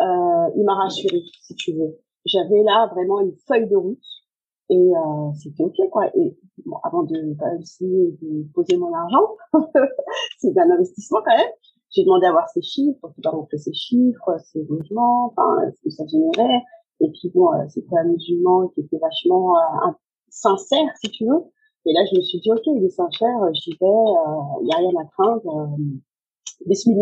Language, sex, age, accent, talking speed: French, female, 40-59, French, 190 wpm